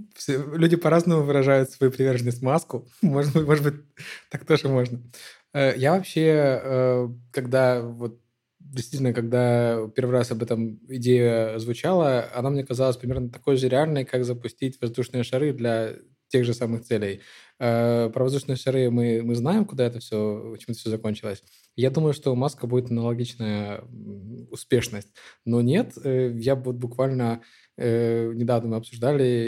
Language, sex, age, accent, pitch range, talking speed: Ukrainian, male, 20-39, native, 115-135 Hz, 140 wpm